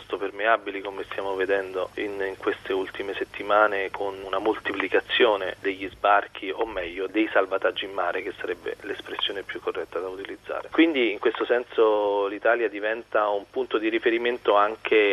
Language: Italian